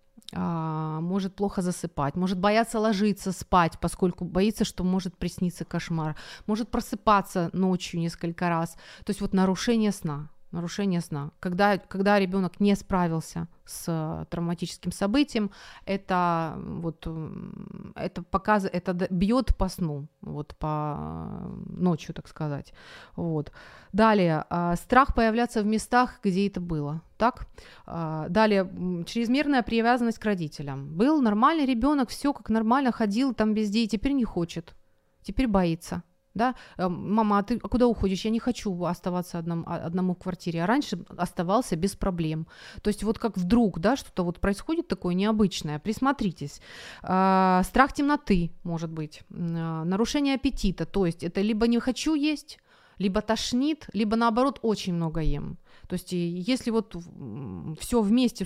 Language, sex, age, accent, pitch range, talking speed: Ukrainian, female, 30-49, native, 170-220 Hz, 135 wpm